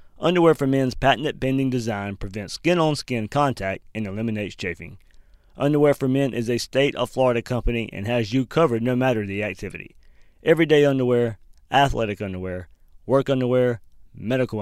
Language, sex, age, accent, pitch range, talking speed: English, male, 20-39, American, 105-140 Hz, 150 wpm